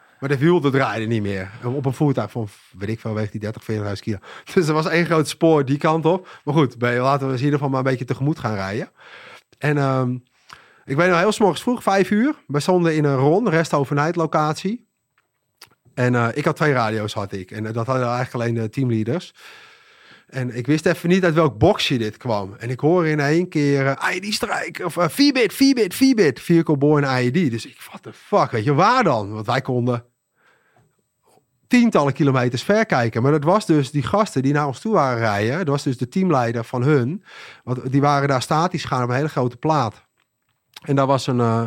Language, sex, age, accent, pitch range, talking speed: Dutch, male, 30-49, Dutch, 125-165 Hz, 215 wpm